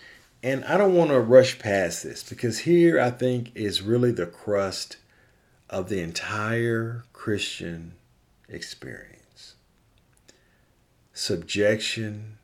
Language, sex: English, male